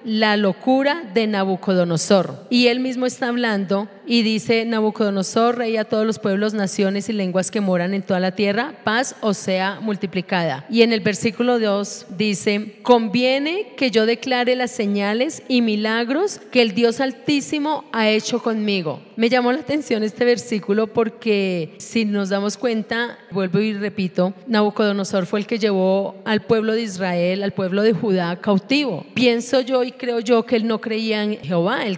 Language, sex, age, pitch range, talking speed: Spanish, female, 30-49, 195-240 Hz, 170 wpm